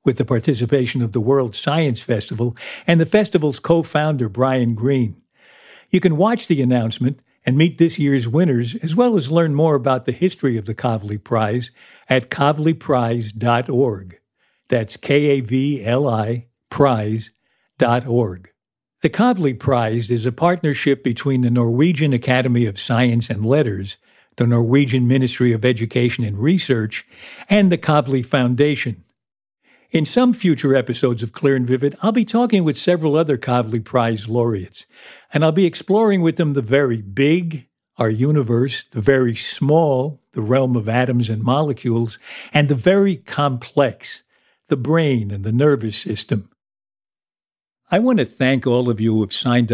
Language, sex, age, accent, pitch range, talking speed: English, male, 60-79, American, 115-150 Hz, 155 wpm